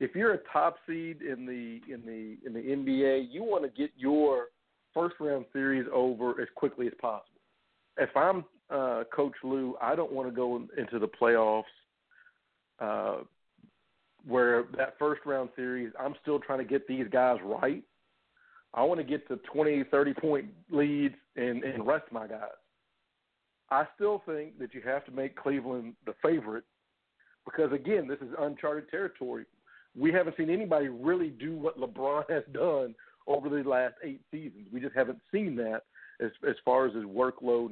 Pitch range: 125-155 Hz